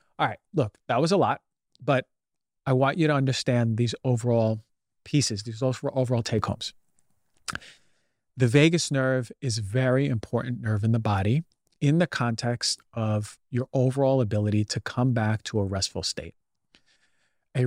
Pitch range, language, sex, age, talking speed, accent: 110-140 Hz, English, male, 40-59, 155 wpm, American